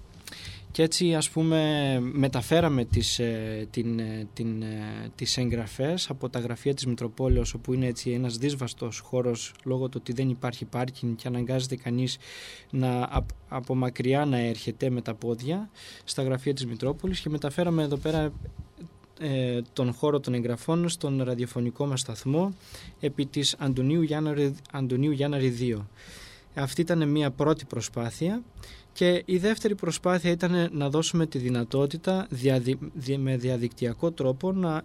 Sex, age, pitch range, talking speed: male, 20-39, 120-155 Hz, 145 wpm